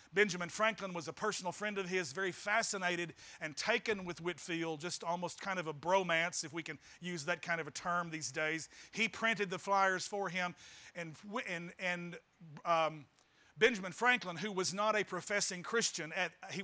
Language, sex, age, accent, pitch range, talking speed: English, male, 40-59, American, 175-220 Hz, 185 wpm